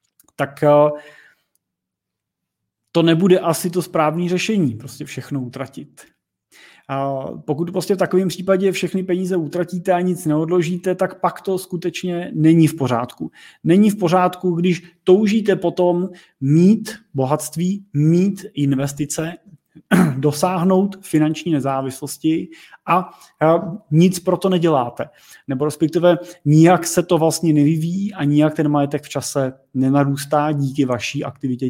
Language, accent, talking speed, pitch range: Czech, native, 120 wpm, 145-180 Hz